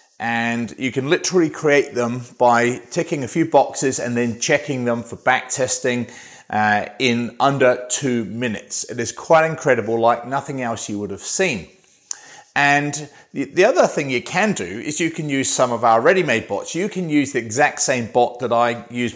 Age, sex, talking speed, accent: 30-49, male, 190 wpm, British